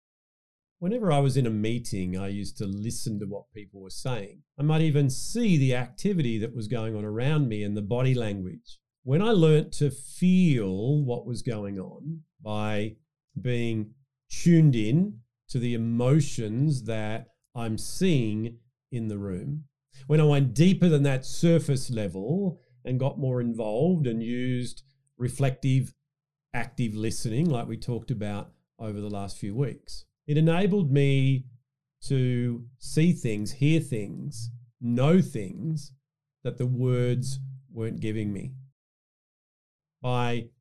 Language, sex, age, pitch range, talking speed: English, male, 40-59, 115-150 Hz, 140 wpm